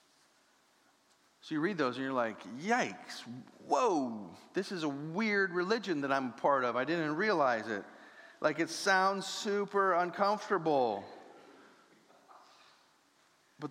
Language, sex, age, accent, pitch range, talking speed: English, male, 40-59, American, 165-225 Hz, 130 wpm